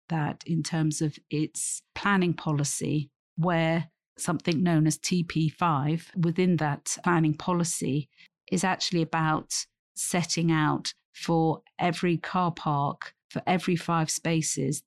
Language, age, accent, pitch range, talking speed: English, 40-59, British, 150-170 Hz, 115 wpm